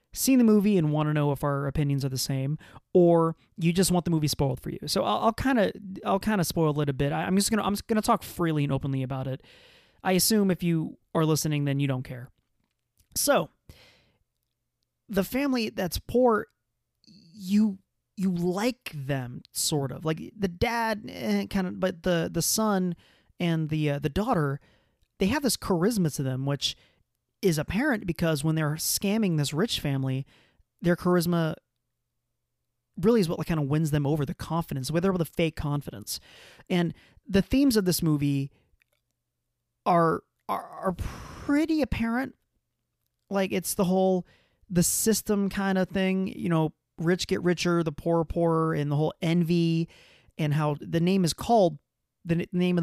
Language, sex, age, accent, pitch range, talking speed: English, male, 30-49, American, 145-190 Hz, 180 wpm